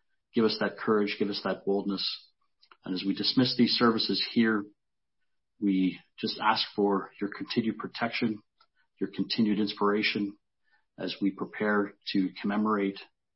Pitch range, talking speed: 95-110 Hz, 135 wpm